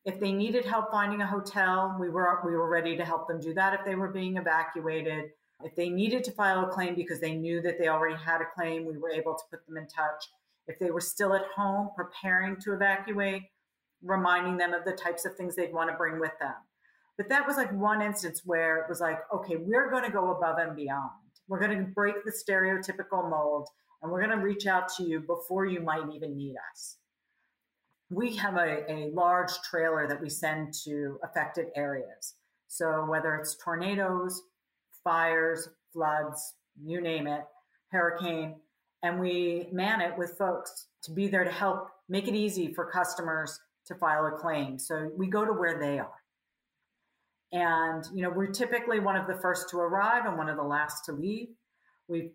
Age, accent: 50-69, American